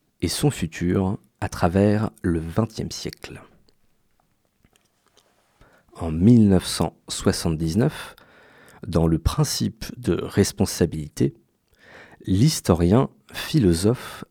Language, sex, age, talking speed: French, male, 40-59, 70 wpm